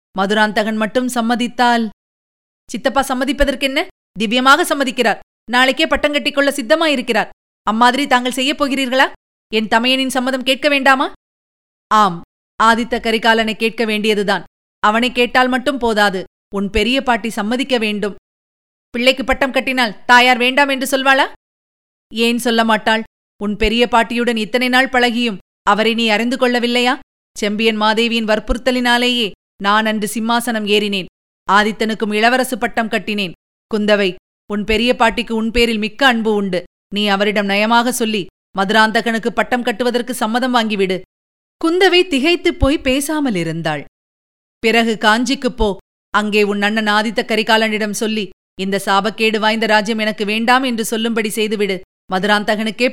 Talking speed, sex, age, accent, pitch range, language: 120 wpm, female, 30-49, native, 210-255 Hz, Tamil